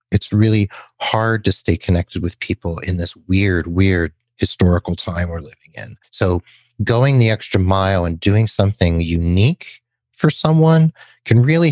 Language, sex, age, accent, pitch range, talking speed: English, male, 40-59, American, 95-125 Hz, 155 wpm